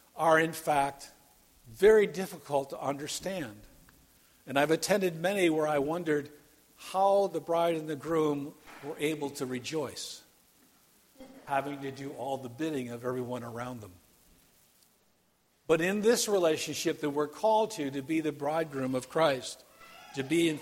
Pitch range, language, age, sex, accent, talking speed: 140-170 Hz, English, 50-69, male, American, 150 wpm